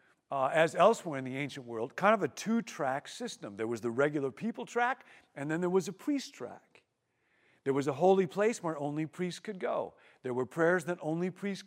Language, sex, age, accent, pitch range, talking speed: English, male, 50-69, American, 145-195 Hz, 210 wpm